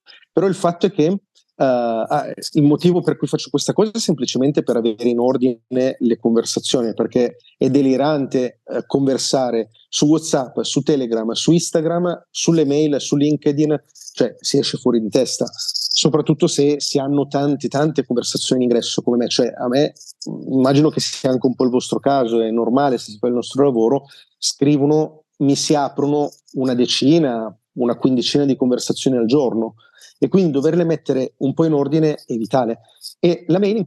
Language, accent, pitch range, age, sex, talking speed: Italian, native, 125-150 Hz, 30-49, male, 180 wpm